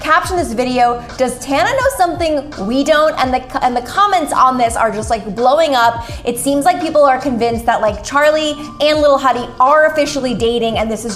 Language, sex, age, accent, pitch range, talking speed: English, female, 20-39, American, 235-295 Hz, 210 wpm